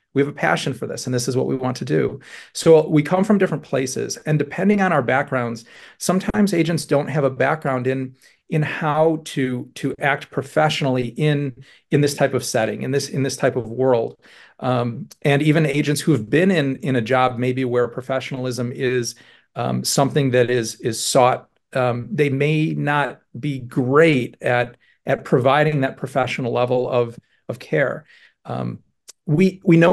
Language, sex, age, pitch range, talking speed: English, male, 40-59, 130-155 Hz, 180 wpm